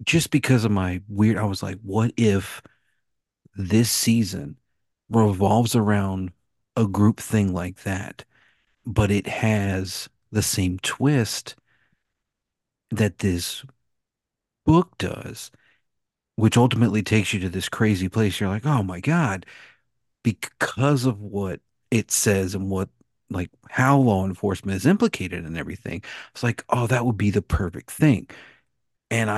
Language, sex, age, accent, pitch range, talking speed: English, male, 40-59, American, 95-115 Hz, 135 wpm